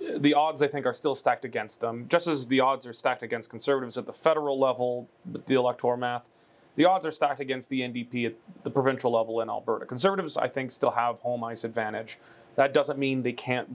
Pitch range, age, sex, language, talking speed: 120-145 Hz, 30-49, male, English, 225 wpm